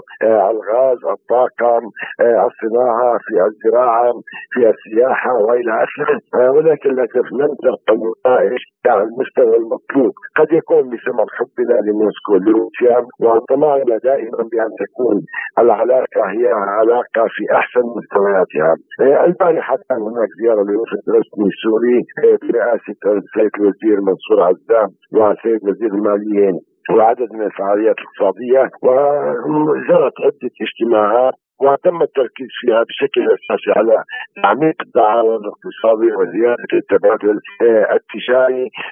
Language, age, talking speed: Arabic, 60-79, 105 wpm